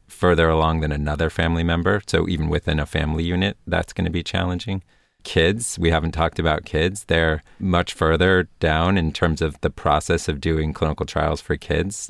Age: 30-49